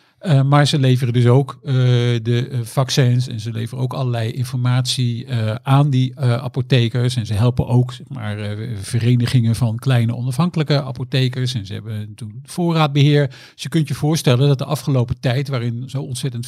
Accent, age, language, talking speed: Dutch, 50-69, Dutch, 175 wpm